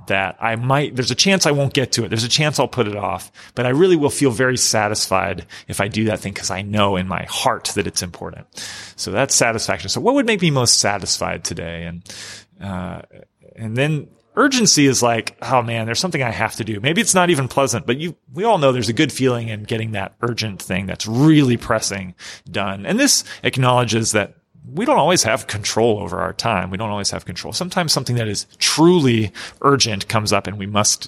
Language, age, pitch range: English, 30-49, 100-130 Hz